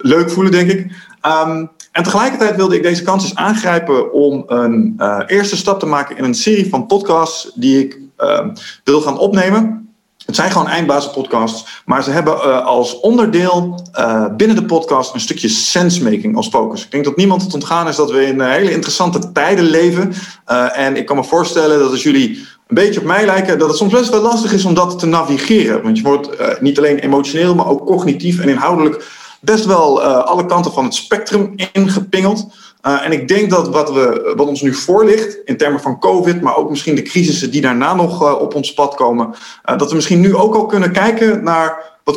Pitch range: 145-200 Hz